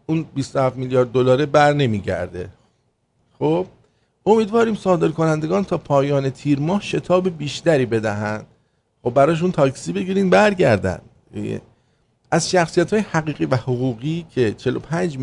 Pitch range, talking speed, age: 110-160 Hz, 120 wpm, 50-69